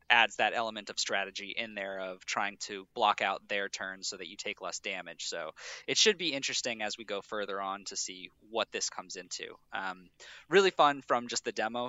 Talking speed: 215 wpm